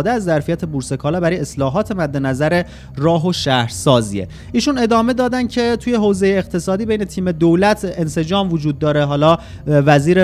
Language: Persian